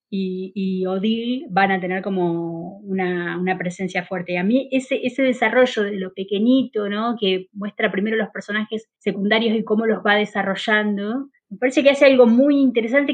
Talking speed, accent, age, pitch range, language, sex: 180 wpm, Argentinian, 20-39, 195-235 Hz, Spanish, female